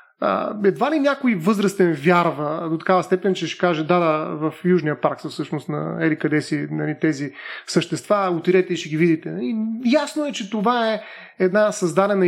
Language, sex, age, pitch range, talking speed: Bulgarian, male, 30-49, 170-210 Hz, 190 wpm